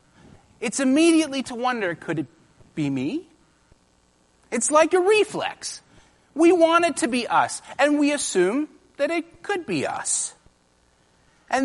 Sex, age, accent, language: male, 30-49, American, English